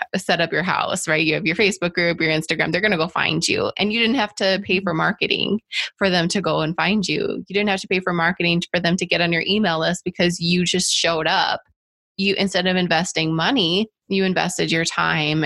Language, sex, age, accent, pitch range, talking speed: English, female, 20-39, American, 170-215 Hz, 240 wpm